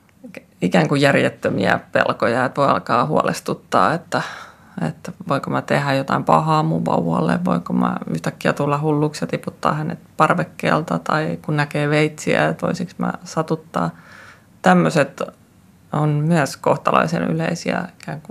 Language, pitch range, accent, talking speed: Finnish, 135-170 Hz, native, 125 wpm